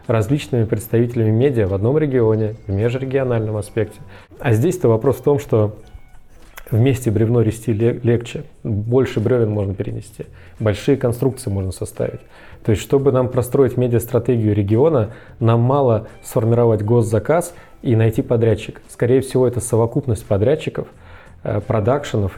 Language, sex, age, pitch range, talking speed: Russian, male, 20-39, 110-130 Hz, 130 wpm